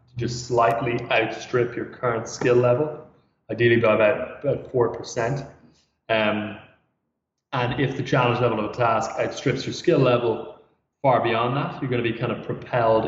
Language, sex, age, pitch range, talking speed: English, male, 20-39, 110-125 Hz, 160 wpm